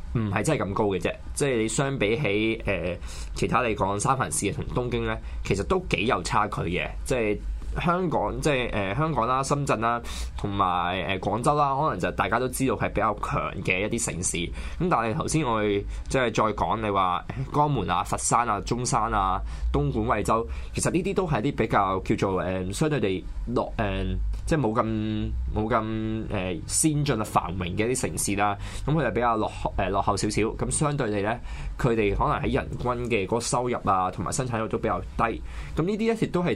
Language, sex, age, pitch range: Chinese, male, 20-39, 100-130 Hz